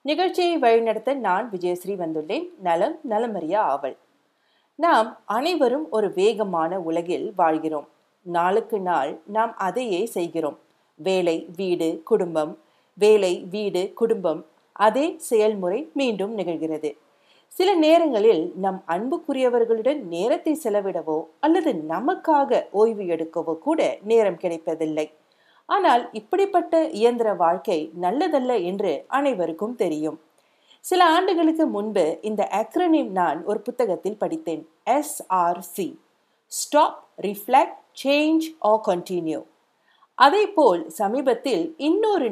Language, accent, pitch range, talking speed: Tamil, native, 175-290 Hz, 95 wpm